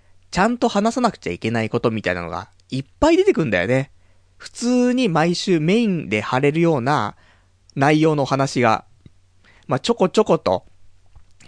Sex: male